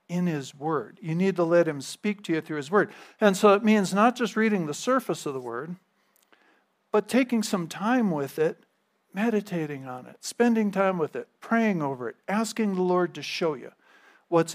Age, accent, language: 50-69, American, English